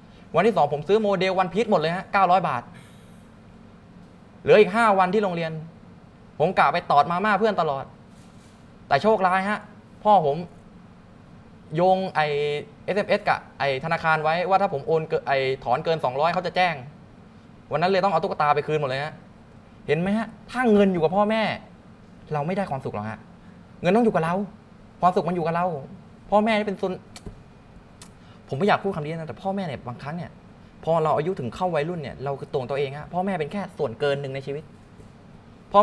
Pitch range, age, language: 145-195 Hz, 20-39, Thai